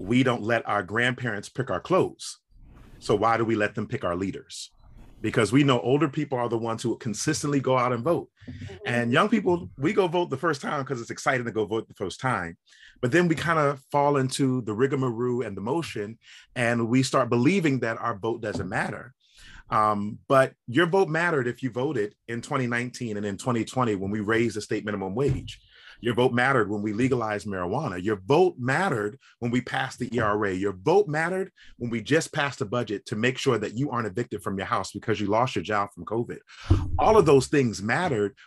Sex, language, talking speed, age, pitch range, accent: male, English, 210 wpm, 30-49, 110-135 Hz, American